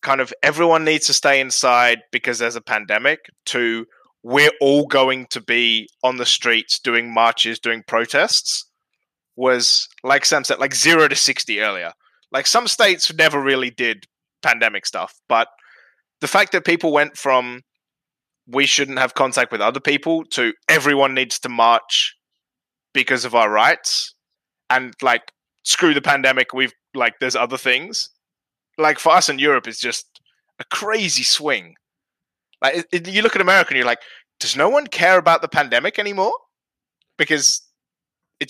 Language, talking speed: English, 160 wpm